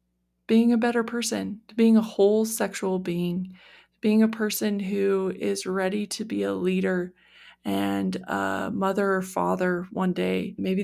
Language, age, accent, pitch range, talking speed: English, 20-39, American, 180-215 Hz, 150 wpm